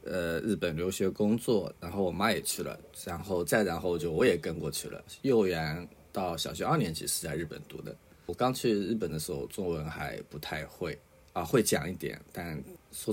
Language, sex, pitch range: Chinese, male, 80-100 Hz